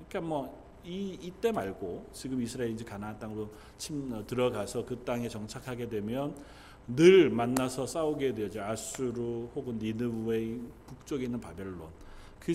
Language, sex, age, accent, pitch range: Korean, male, 40-59, native, 100-145 Hz